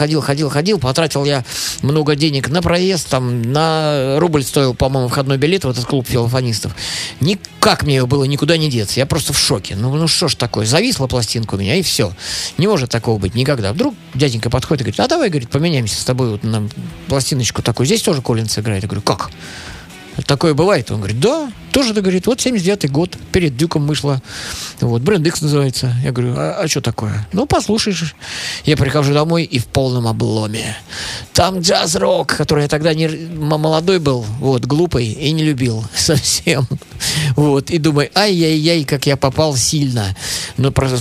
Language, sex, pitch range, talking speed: Russian, male, 115-155 Hz, 180 wpm